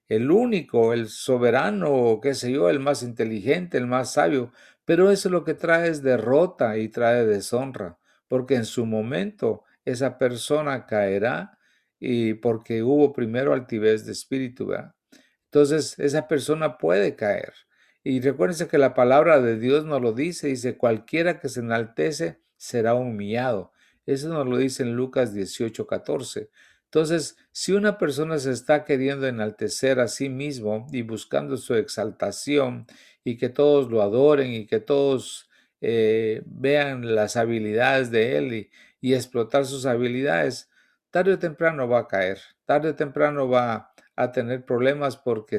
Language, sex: English, male